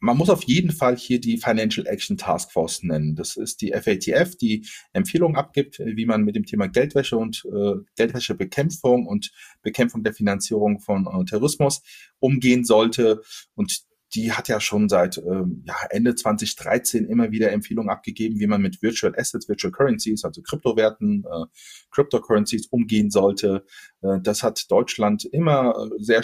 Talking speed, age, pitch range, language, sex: 160 wpm, 30-49, 110-160 Hz, German, male